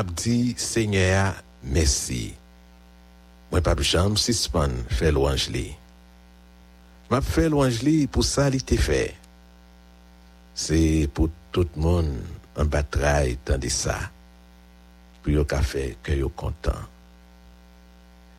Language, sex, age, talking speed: English, male, 60-79, 75 wpm